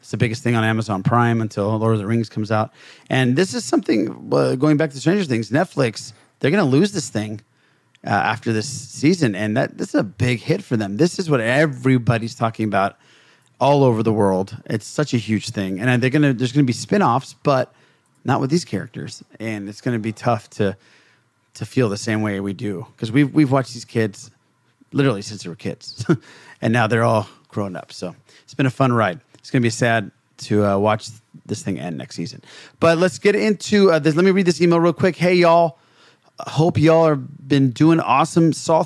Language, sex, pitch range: English, male, 115-150 Hz